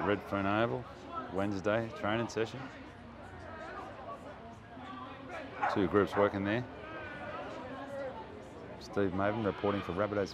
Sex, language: male, English